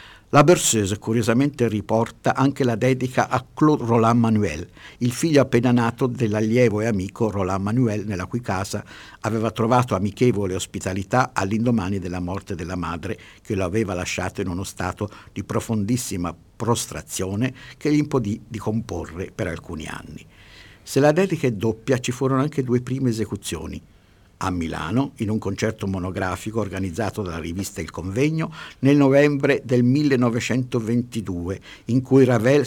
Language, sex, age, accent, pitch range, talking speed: Italian, male, 50-69, native, 95-125 Hz, 145 wpm